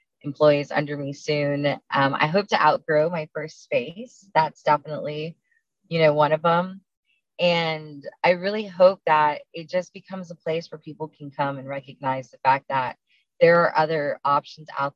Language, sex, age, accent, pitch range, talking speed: English, female, 20-39, American, 140-170 Hz, 175 wpm